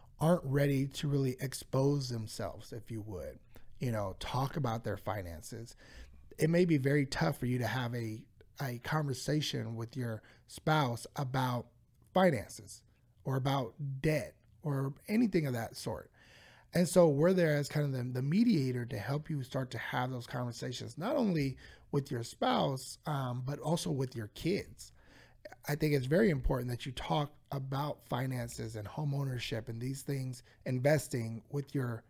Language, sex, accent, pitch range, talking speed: English, male, American, 115-150 Hz, 165 wpm